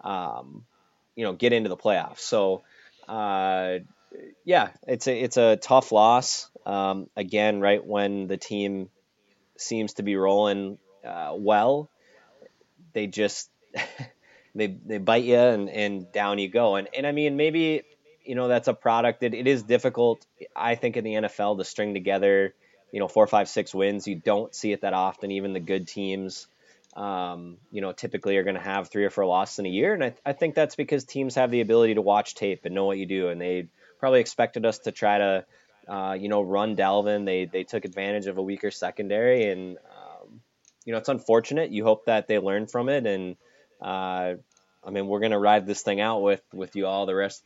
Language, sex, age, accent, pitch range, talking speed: English, male, 20-39, American, 95-115 Hz, 205 wpm